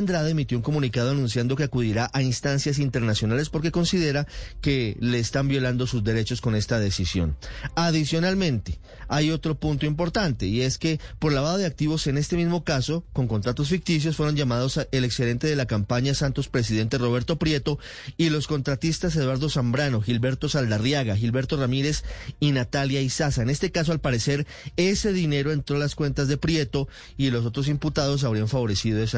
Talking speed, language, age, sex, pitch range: 170 wpm, Spanish, 30-49, male, 120-150 Hz